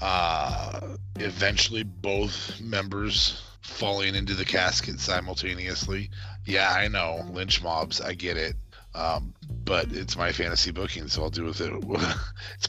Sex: male